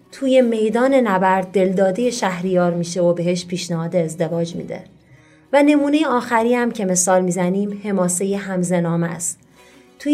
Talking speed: 135 wpm